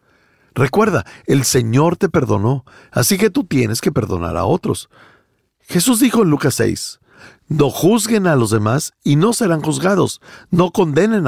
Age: 50-69